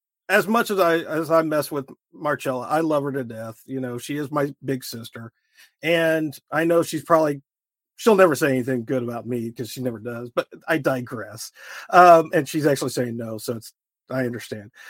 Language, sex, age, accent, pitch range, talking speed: English, male, 40-59, American, 130-175 Hz, 200 wpm